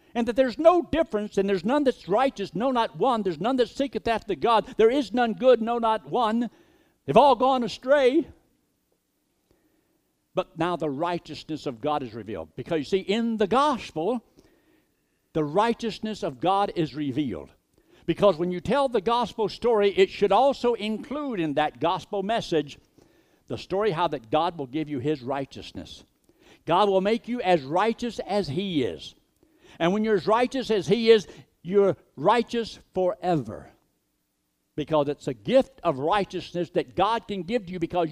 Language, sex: English, male